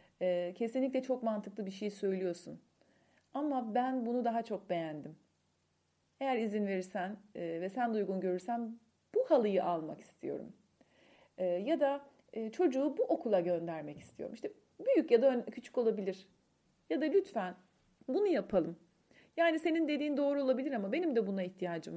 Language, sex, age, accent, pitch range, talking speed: Turkish, female, 40-59, native, 185-260 Hz, 140 wpm